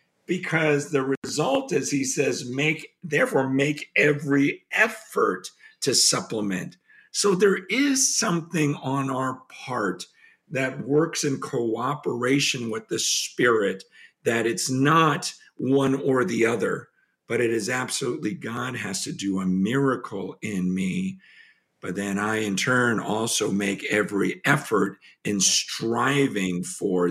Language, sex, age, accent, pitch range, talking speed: English, male, 50-69, American, 100-145 Hz, 130 wpm